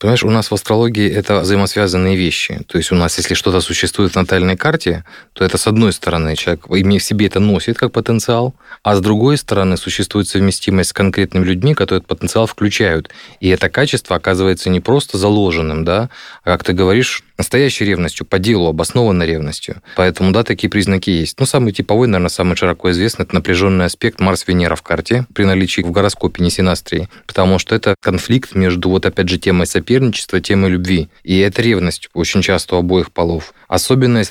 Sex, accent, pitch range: male, native, 90-105 Hz